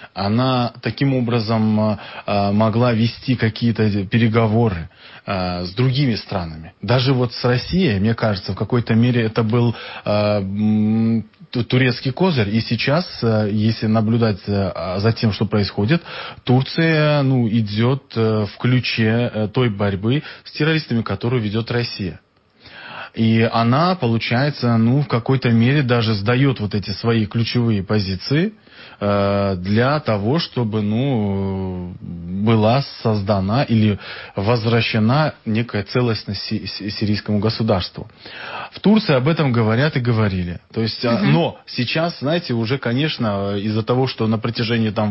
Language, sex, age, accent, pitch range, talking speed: Russian, male, 20-39, native, 105-120 Hz, 115 wpm